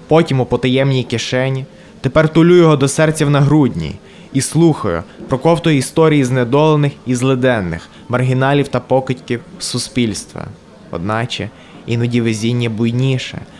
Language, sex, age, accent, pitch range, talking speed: Ukrainian, male, 20-39, native, 115-140 Hz, 120 wpm